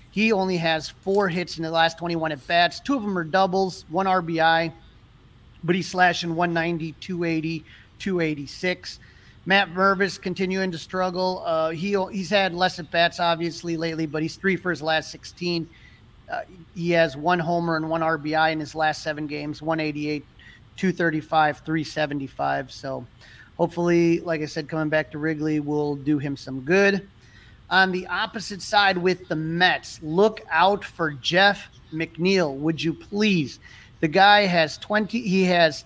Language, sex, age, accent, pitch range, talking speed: English, male, 30-49, American, 155-190 Hz, 155 wpm